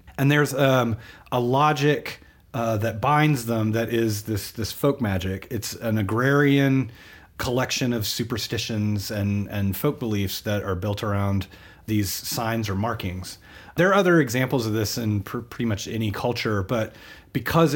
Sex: male